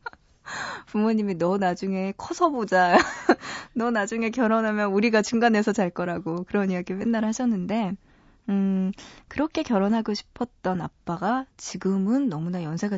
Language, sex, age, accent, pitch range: Korean, female, 20-39, native, 185-255 Hz